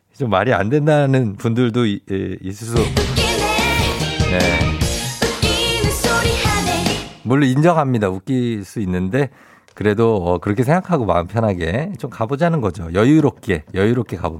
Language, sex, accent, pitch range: Korean, male, native, 100-150 Hz